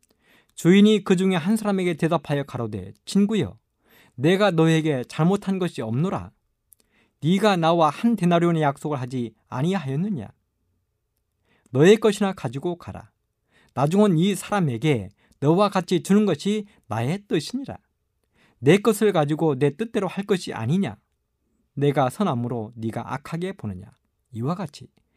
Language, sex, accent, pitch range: Korean, male, native, 120-190 Hz